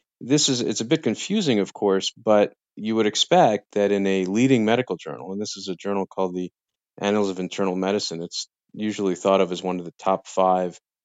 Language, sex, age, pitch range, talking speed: English, male, 40-59, 95-110 Hz, 210 wpm